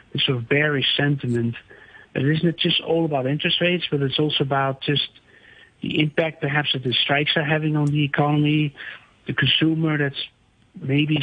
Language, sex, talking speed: English, male, 175 wpm